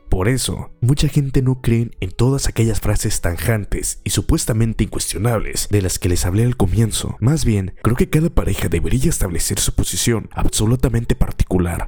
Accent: Mexican